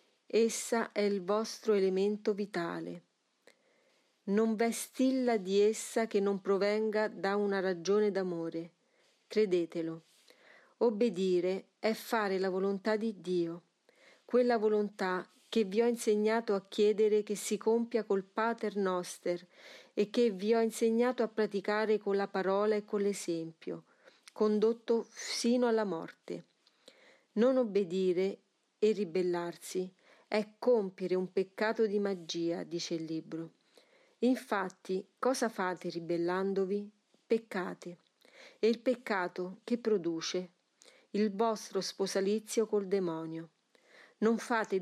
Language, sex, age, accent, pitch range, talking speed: Italian, female, 40-59, native, 185-225 Hz, 115 wpm